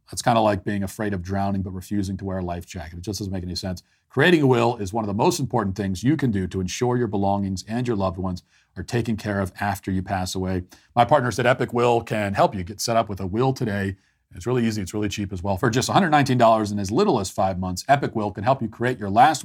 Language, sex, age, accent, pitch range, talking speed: English, male, 40-59, American, 95-125 Hz, 280 wpm